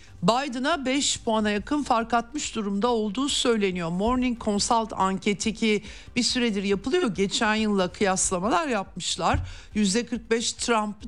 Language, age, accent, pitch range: Turkish, 60-79, native, 175-225 Hz